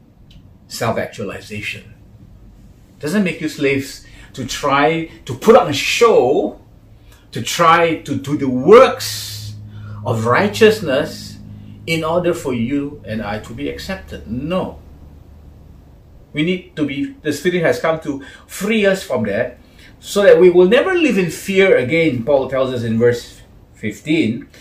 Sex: male